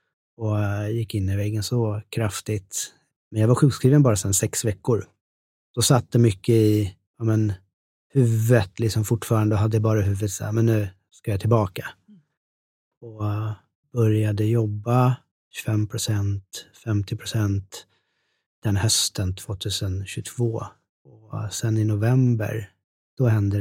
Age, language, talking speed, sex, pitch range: 30-49, Swedish, 125 wpm, male, 105-120 Hz